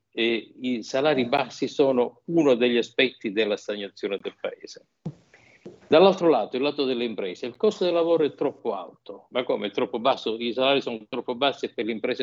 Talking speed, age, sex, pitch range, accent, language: 185 wpm, 50-69, male, 110-145 Hz, native, Italian